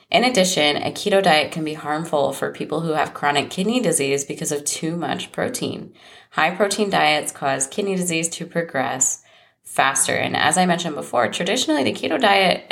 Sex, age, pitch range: female, 20-39, 135-175 Hz